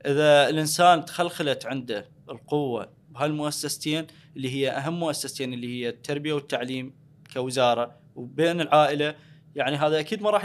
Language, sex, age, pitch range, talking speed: Arabic, male, 20-39, 140-160 Hz, 125 wpm